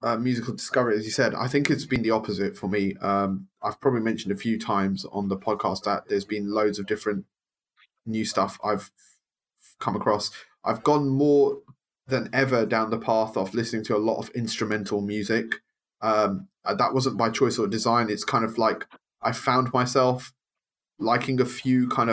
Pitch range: 105-130 Hz